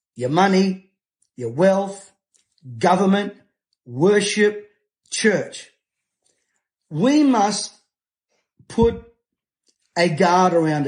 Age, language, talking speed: 40-59, English, 70 wpm